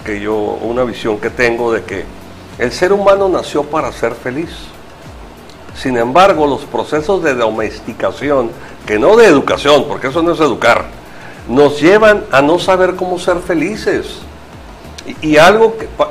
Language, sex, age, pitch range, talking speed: Spanish, male, 60-79, 130-195 Hz, 155 wpm